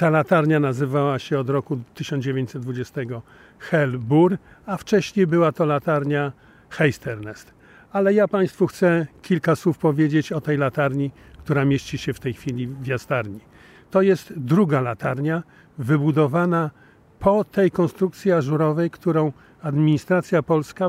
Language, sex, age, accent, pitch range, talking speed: Polish, male, 50-69, native, 140-170 Hz, 125 wpm